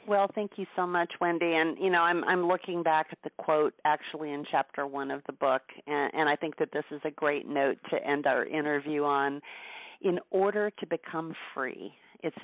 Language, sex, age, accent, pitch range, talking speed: English, female, 40-59, American, 145-170 Hz, 210 wpm